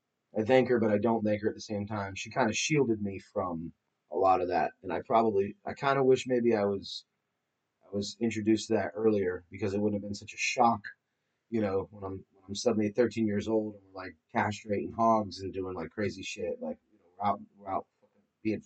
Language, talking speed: English, 230 wpm